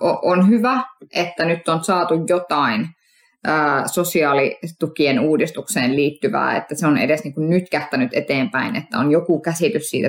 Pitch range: 150-185 Hz